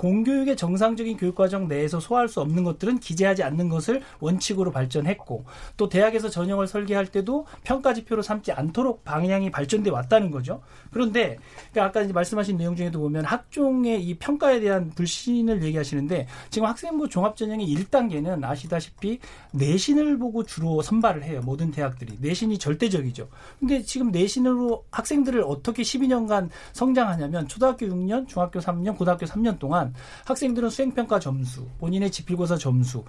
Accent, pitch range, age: native, 155-235 Hz, 40-59